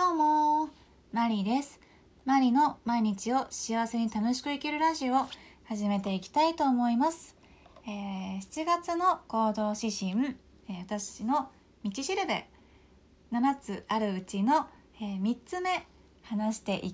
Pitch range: 200-270 Hz